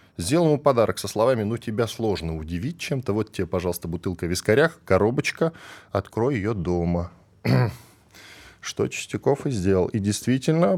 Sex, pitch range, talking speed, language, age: male, 95-125 Hz, 145 wpm, Russian, 10-29